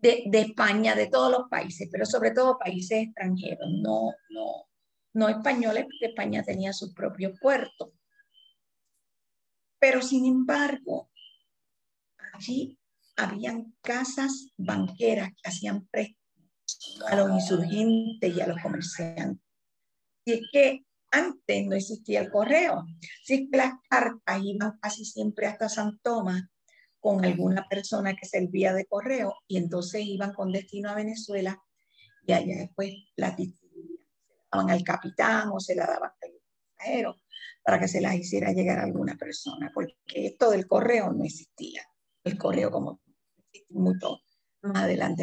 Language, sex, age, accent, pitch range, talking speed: English, female, 50-69, American, 190-250 Hz, 140 wpm